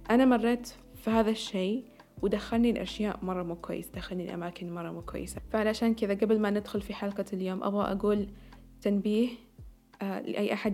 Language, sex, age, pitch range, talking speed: Arabic, female, 20-39, 185-215 Hz, 155 wpm